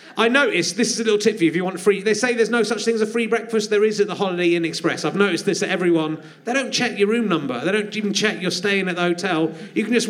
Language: English